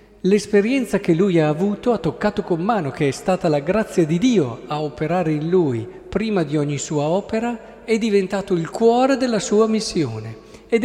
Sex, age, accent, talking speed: male, 50-69, native, 185 wpm